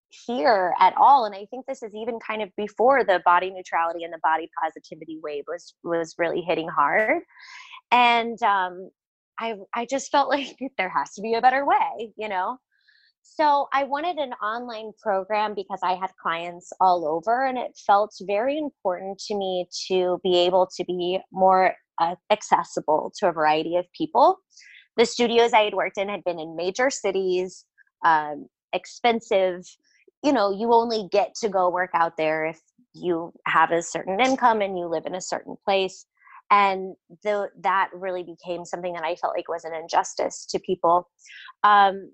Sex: female